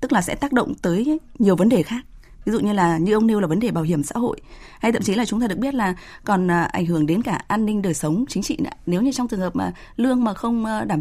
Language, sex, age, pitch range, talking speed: Vietnamese, female, 20-39, 170-225 Hz, 300 wpm